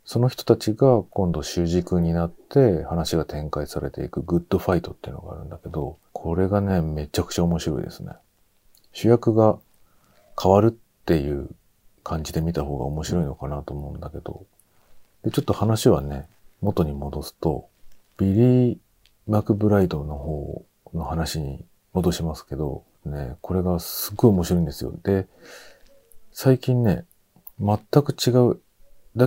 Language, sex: Japanese, male